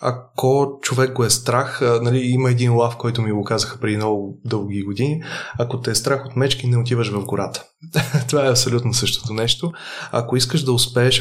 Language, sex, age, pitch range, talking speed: Bulgarian, male, 20-39, 115-140 Hz, 195 wpm